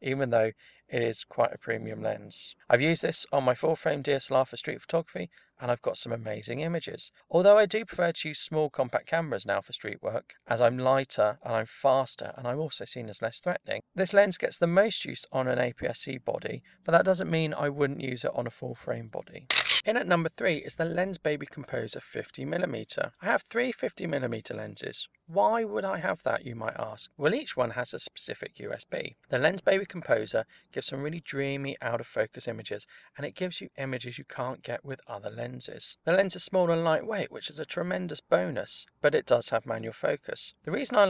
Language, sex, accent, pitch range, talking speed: English, male, British, 125-170 Hz, 210 wpm